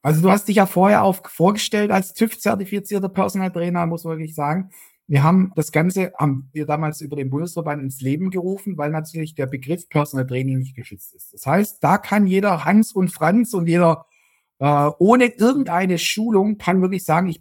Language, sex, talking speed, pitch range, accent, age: German, male, 195 wpm, 150-190 Hz, German, 50-69